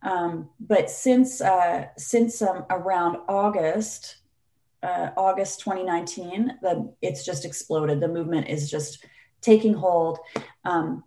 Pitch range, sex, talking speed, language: 155-205 Hz, female, 120 wpm, English